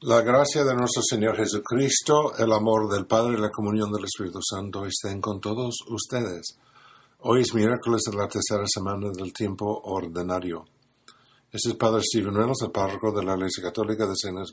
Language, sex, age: Italian, male, 50-69